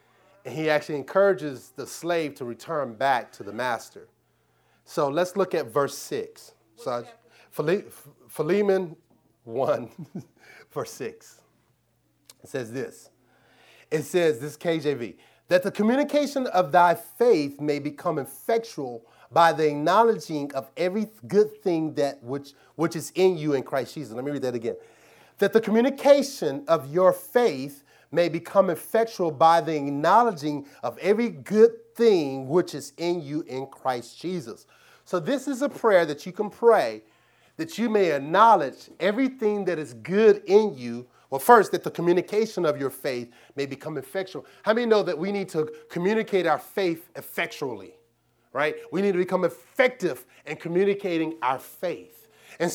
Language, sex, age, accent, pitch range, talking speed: English, male, 30-49, American, 145-210 Hz, 155 wpm